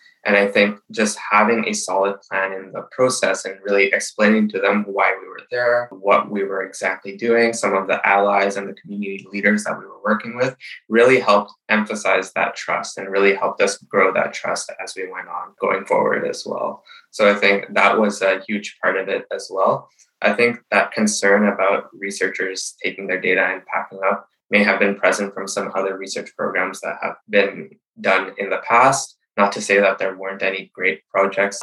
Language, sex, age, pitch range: English, male, 20-39, 95-110 Hz